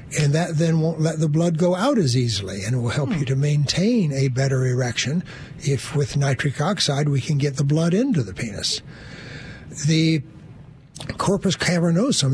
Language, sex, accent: English, male, American